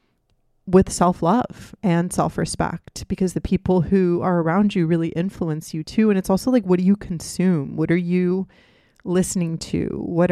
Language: English